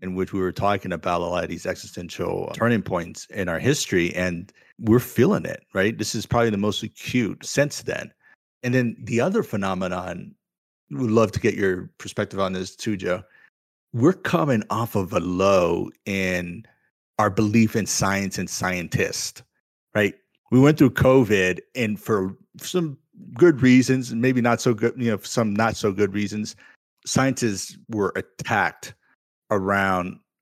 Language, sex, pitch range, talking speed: English, male, 95-115 Hz, 160 wpm